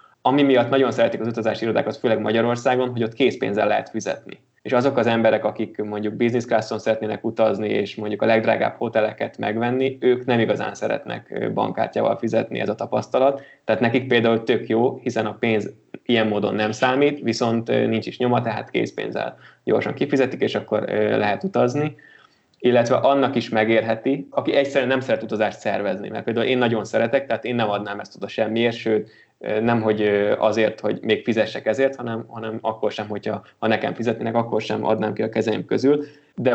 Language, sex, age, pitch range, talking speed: Hungarian, male, 20-39, 110-125 Hz, 175 wpm